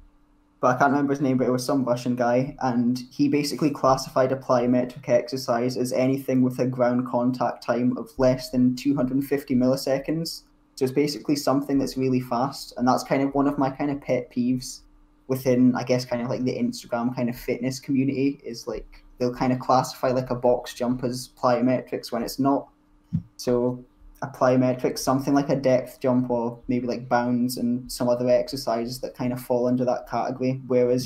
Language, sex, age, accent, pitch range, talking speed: English, male, 10-29, British, 125-135 Hz, 190 wpm